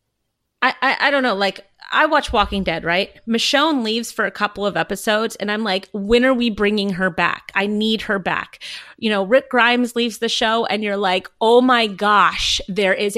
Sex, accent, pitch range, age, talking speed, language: female, American, 195-255 Hz, 30-49, 210 wpm, English